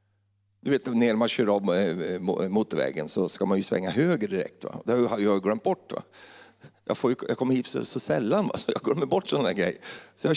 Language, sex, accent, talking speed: Swedish, male, native, 220 wpm